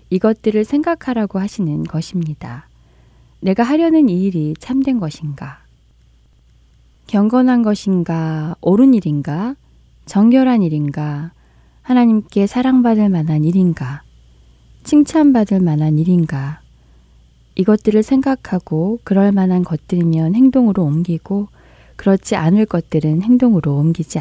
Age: 20-39